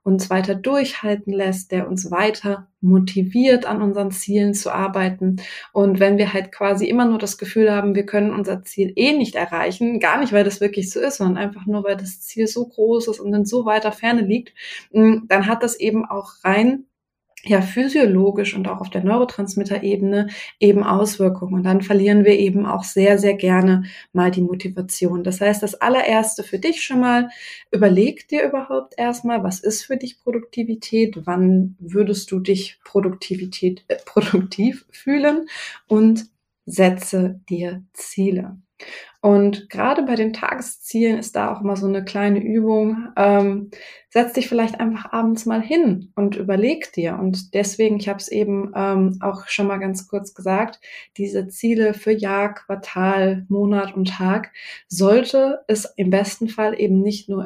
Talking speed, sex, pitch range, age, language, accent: 170 wpm, female, 190-225 Hz, 20-39, German, German